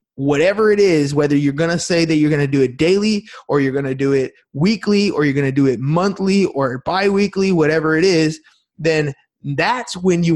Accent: American